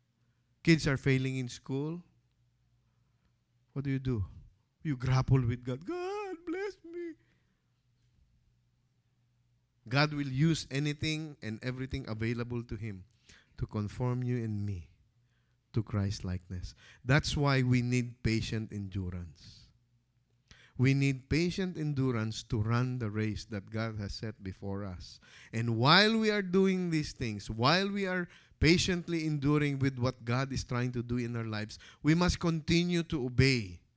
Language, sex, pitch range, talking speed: English, male, 115-145 Hz, 140 wpm